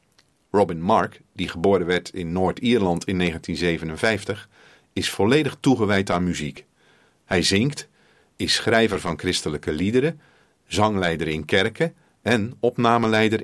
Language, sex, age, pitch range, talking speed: Dutch, male, 50-69, 85-120 Hz, 115 wpm